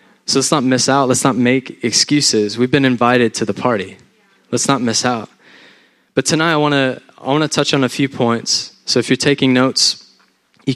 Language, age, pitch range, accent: English, 20-39, 115-140 Hz, American